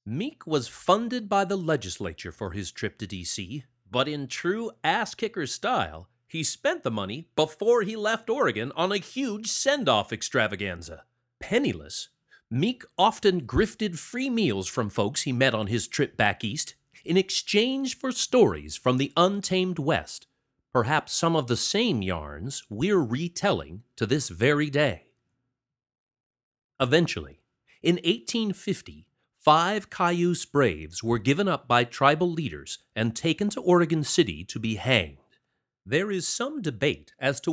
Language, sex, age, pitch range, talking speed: English, male, 40-59, 115-180 Hz, 145 wpm